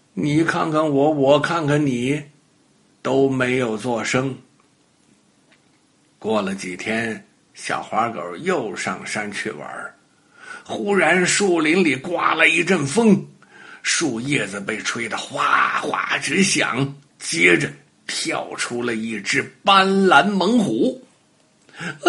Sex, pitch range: male, 145-205 Hz